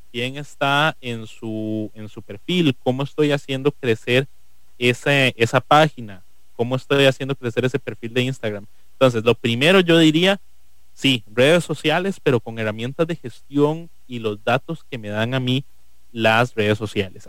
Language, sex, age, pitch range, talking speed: English, male, 30-49, 110-140 Hz, 155 wpm